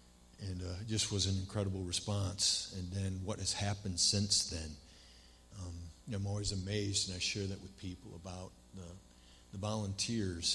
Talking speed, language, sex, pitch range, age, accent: 175 wpm, English, male, 85-100 Hz, 50-69, American